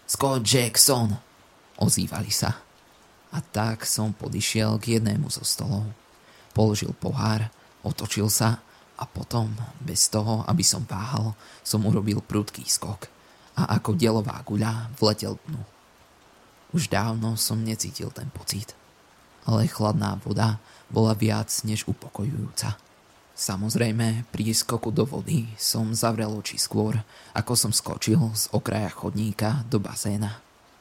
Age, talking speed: 20-39, 125 wpm